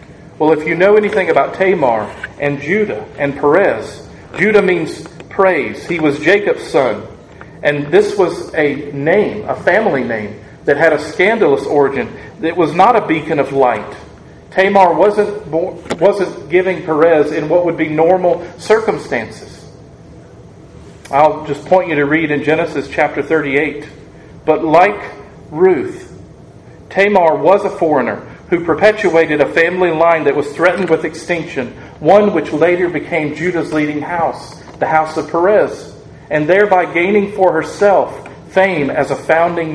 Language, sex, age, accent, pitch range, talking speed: English, male, 40-59, American, 150-195 Hz, 145 wpm